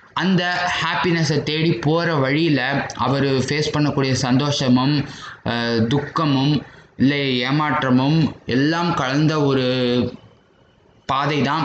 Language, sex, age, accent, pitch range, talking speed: Tamil, male, 20-39, native, 125-155 Hz, 80 wpm